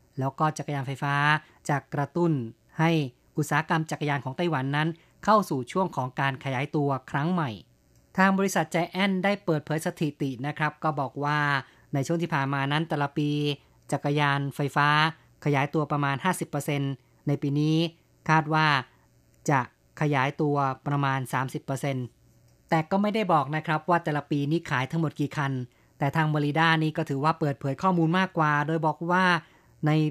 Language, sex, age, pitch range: Thai, female, 20-39, 135-160 Hz